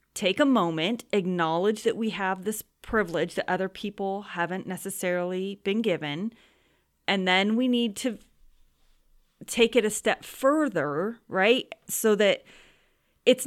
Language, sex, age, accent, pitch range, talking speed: English, female, 30-49, American, 170-230 Hz, 135 wpm